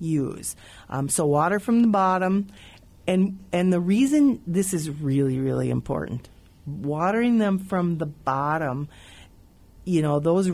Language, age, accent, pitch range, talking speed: English, 50-69, American, 135-175 Hz, 135 wpm